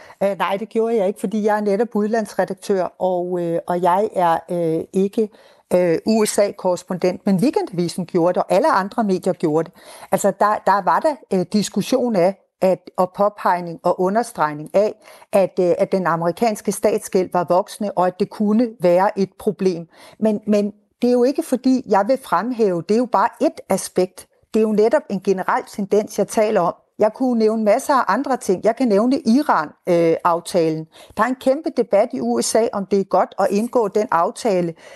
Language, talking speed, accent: Danish, 190 wpm, native